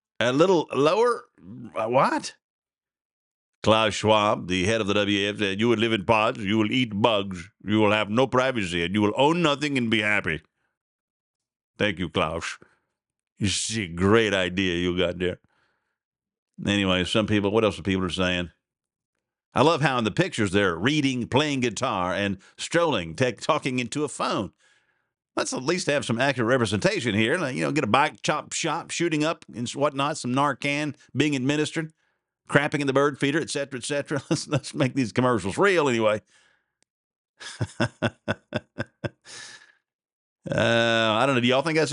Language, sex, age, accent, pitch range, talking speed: English, male, 50-69, American, 105-140 Hz, 165 wpm